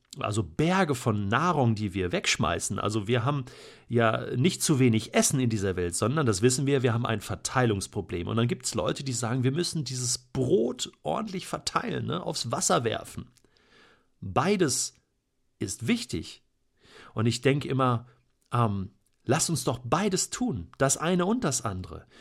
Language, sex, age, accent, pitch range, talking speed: German, male, 50-69, German, 115-165 Hz, 160 wpm